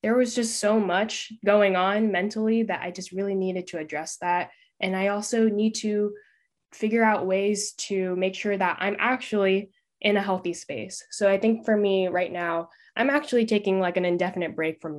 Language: English